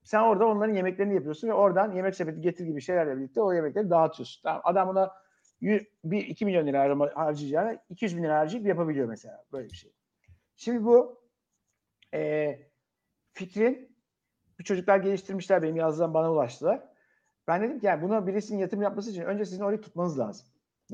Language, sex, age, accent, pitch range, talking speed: Turkish, male, 60-79, native, 155-200 Hz, 165 wpm